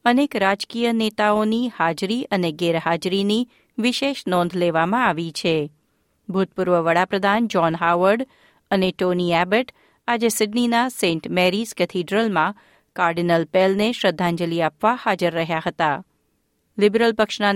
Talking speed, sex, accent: 110 wpm, female, native